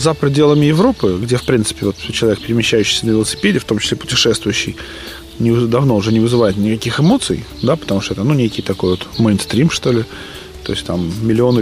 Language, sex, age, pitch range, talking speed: Russian, male, 20-39, 100-125 Hz, 190 wpm